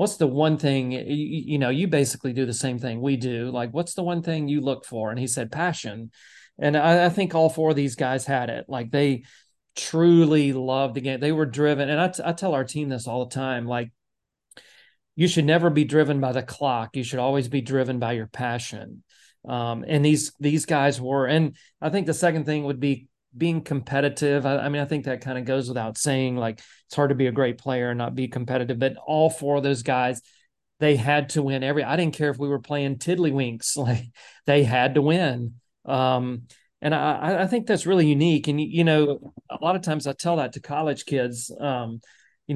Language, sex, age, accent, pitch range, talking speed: English, male, 40-59, American, 130-155 Hz, 225 wpm